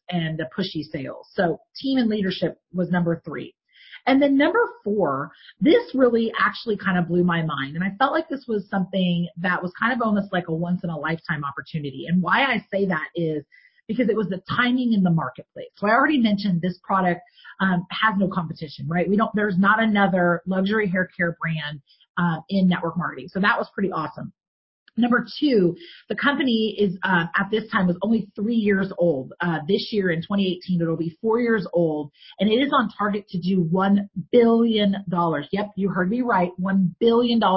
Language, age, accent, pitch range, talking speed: English, 30-49, American, 175-230 Hz, 200 wpm